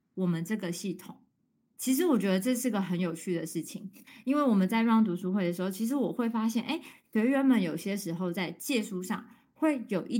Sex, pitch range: female, 180-245 Hz